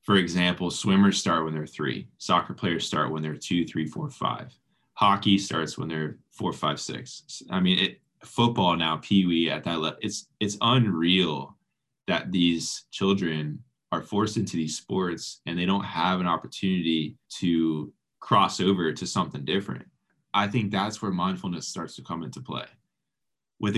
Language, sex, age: English, male, 20-39